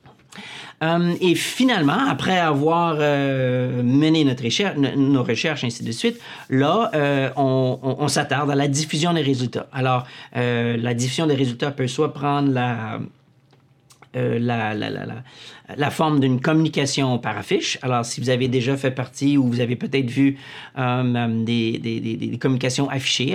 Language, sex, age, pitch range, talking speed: French, male, 40-59, 125-150 Hz, 160 wpm